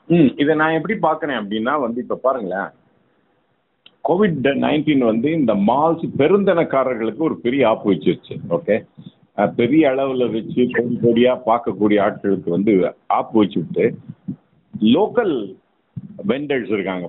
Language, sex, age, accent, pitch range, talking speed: Tamil, male, 50-69, native, 115-170 Hz, 110 wpm